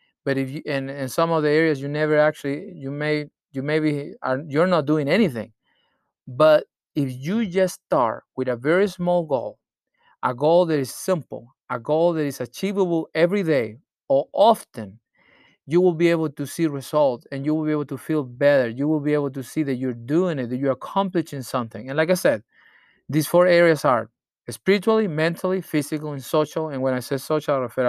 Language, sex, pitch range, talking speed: English, male, 135-180 Hz, 200 wpm